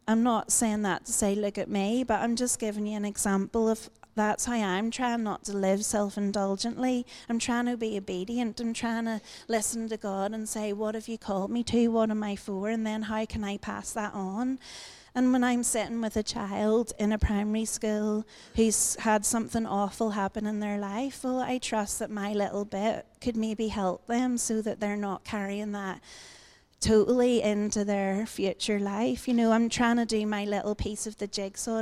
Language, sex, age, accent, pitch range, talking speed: English, female, 30-49, British, 205-230 Hz, 205 wpm